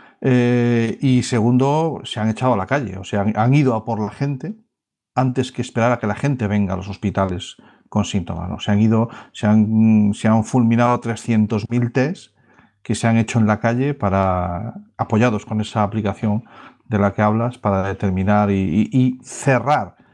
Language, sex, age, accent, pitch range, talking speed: English, male, 40-59, Spanish, 105-125 Hz, 195 wpm